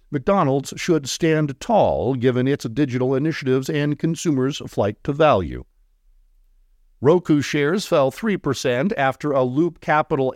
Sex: male